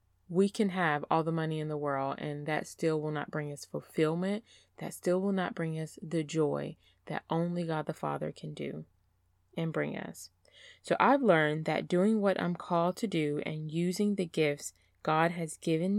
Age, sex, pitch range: 20-39, female, 145-195 Hz